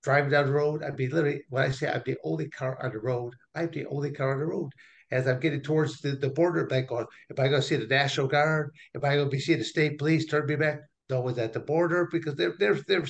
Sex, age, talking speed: male, 60-79, 270 wpm